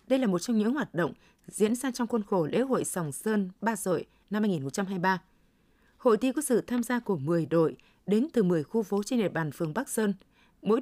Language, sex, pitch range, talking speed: Vietnamese, female, 185-240 Hz, 225 wpm